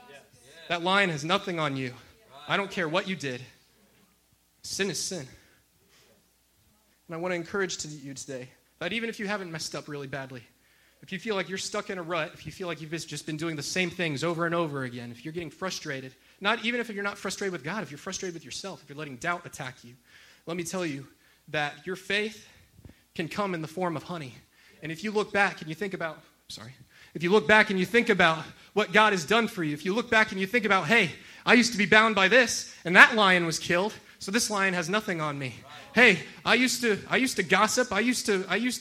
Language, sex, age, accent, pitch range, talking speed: English, male, 30-49, American, 155-215 Hz, 245 wpm